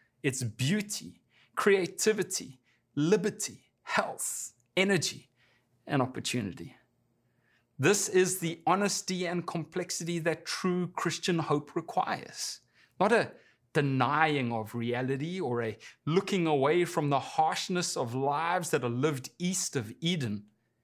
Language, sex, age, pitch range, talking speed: English, male, 30-49, 130-185 Hz, 110 wpm